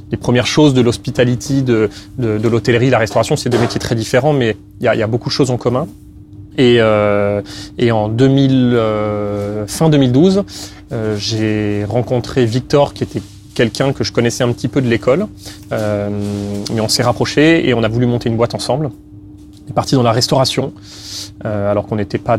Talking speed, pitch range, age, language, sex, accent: 200 wpm, 100-125 Hz, 30-49, French, male, French